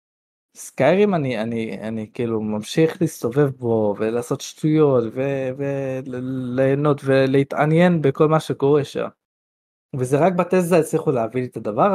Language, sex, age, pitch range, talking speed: Hebrew, male, 20-39, 120-165 Hz, 130 wpm